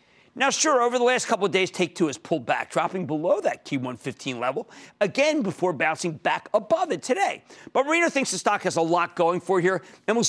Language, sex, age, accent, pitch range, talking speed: English, male, 50-69, American, 150-225 Hz, 220 wpm